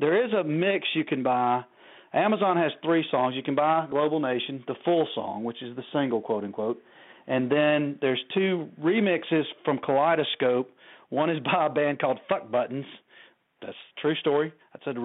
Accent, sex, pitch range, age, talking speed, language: American, male, 125-150 Hz, 40-59, 180 wpm, English